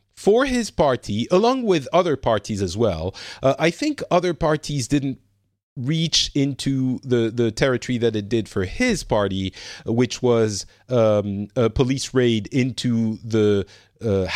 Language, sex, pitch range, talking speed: English, male, 105-140 Hz, 145 wpm